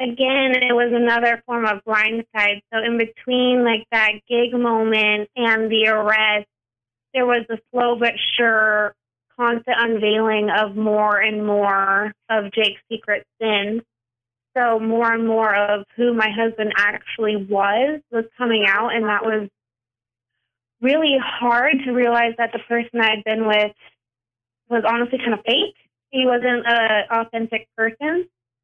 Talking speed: 145 wpm